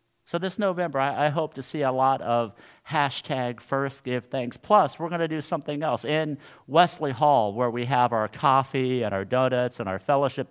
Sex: male